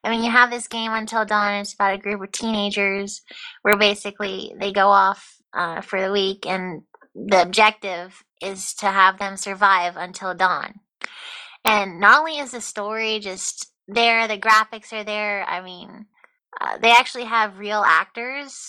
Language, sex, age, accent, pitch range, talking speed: English, female, 20-39, American, 200-260 Hz, 170 wpm